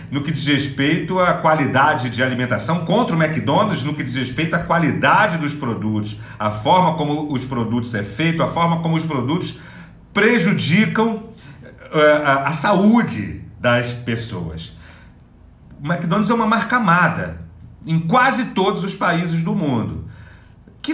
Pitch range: 125-165 Hz